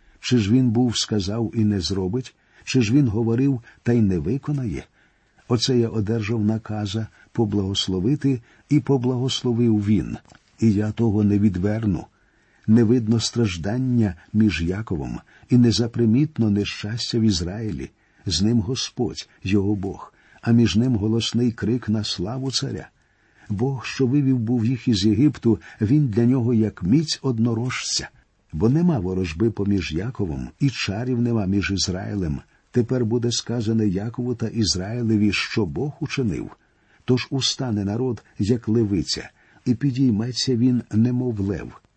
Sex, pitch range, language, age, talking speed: male, 105-125 Hz, Ukrainian, 50-69, 135 wpm